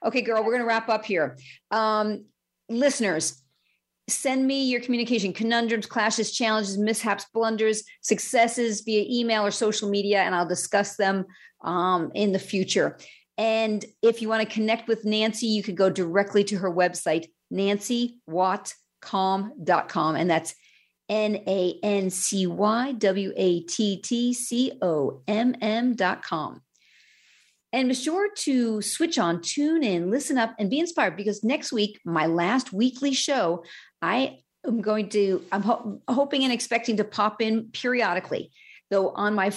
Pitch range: 190-235 Hz